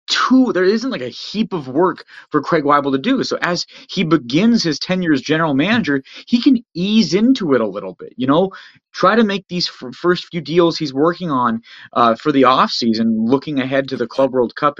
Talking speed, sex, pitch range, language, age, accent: 225 wpm, male, 130-195 Hz, English, 30-49, American